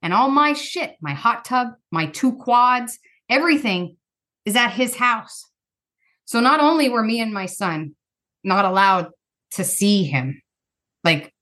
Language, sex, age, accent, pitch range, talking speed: English, female, 30-49, American, 180-240 Hz, 150 wpm